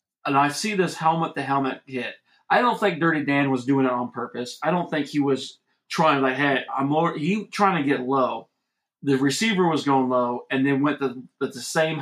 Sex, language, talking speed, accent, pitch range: male, English, 215 wpm, American, 130-160 Hz